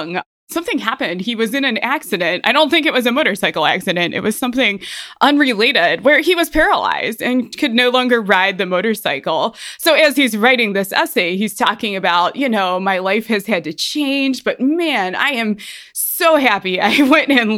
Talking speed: 195 wpm